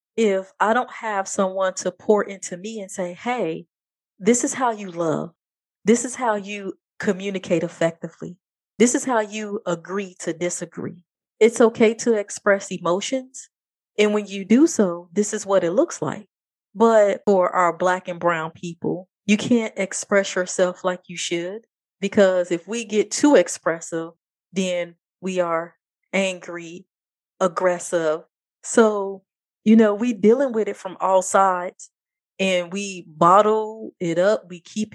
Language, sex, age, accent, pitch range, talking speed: English, female, 30-49, American, 180-215 Hz, 150 wpm